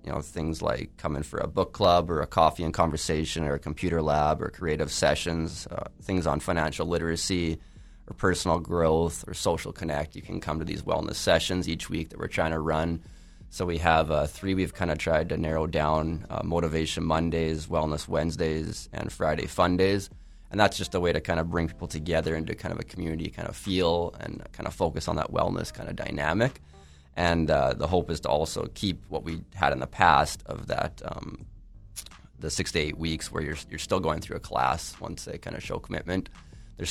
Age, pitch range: 20-39, 75-85 Hz